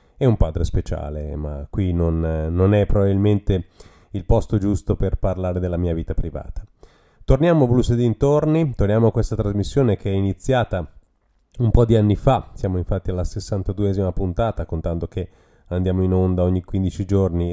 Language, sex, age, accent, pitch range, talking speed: Italian, male, 30-49, native, 85-110 Hz, 165 wpm